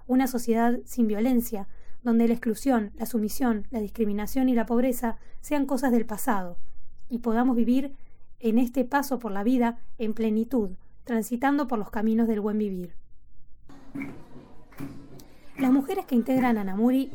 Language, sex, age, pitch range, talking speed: Spanish, female, 20-39, 215-260 Hz, 145 wpm